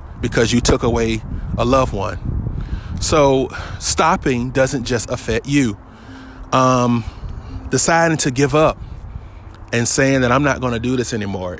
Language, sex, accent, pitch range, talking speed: English, male, American, 110-145 Hz, 145 wpm